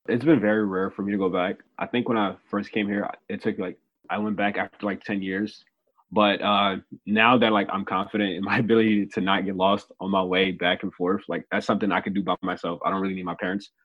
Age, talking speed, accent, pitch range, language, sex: 20-39, 260 wpm, American, 95-110 Hz, English, male